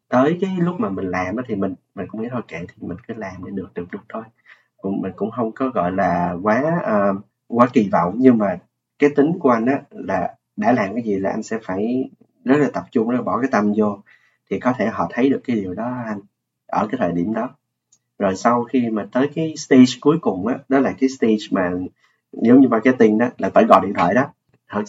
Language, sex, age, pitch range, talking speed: Vietnamese, male, 20-39, 105-135 Hz, 235 wpm